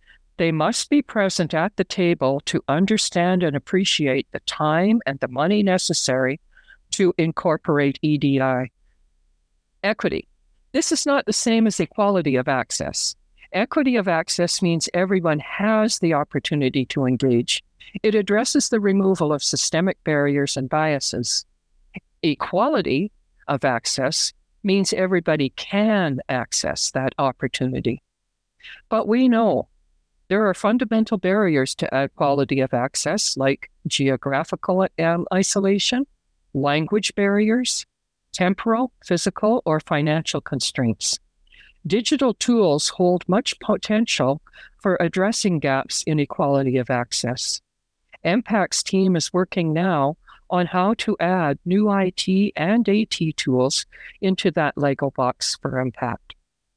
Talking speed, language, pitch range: 115 wpm, English, 140-205 Hz